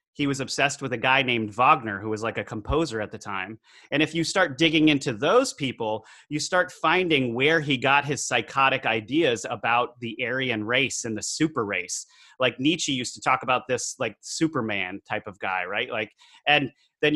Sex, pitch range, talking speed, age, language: male, 120-155 Hz, 200 wpm, 30-49, English